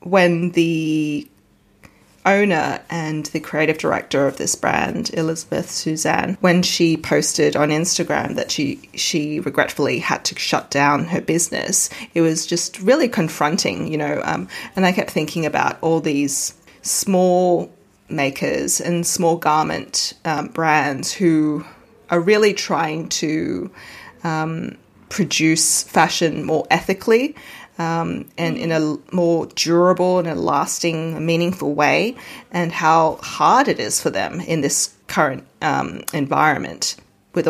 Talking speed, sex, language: 135 wpm, female, English